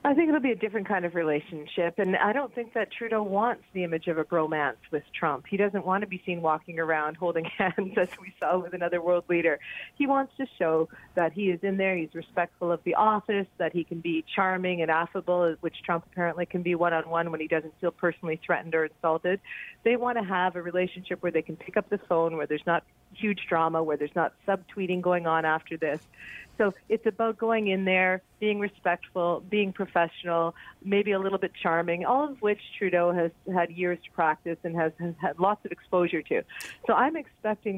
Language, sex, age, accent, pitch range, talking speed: English, female, 40-59, American, 170-200 Hz, 215 wpm